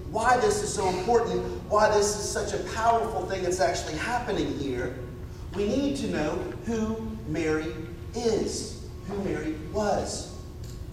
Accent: American